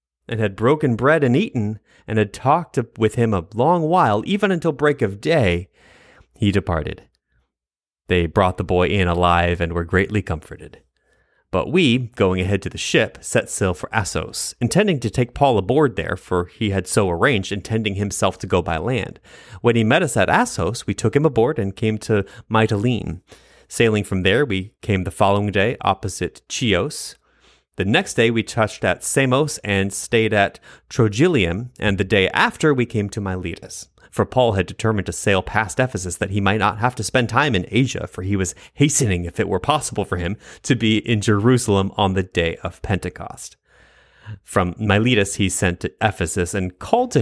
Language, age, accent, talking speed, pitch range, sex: English, 30-49, American, 190 wpm, 95-115 Hz, male